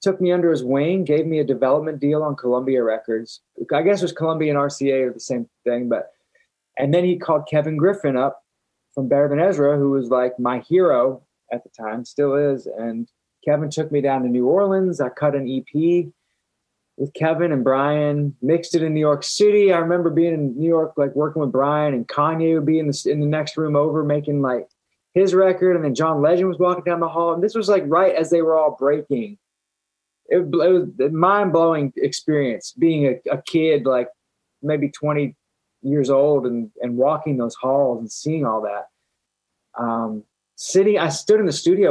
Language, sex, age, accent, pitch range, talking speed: English, male, 20-39, American, 130-170 Hz, 205 wpm